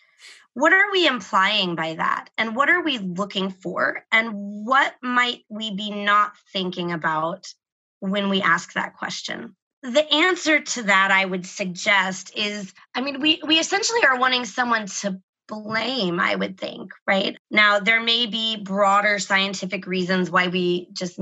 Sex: female